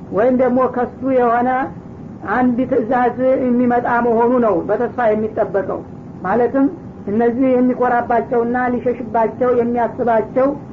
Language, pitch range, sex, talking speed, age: Amharic, 225-245 Hz, female, 85 wpm, 50-69